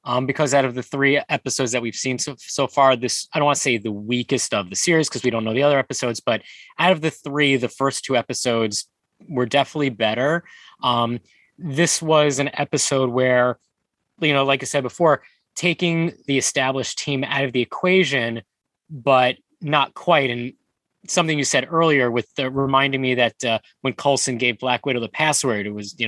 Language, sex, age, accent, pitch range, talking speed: English, male, 20-39, American, 120-145 Hz, 200 wpm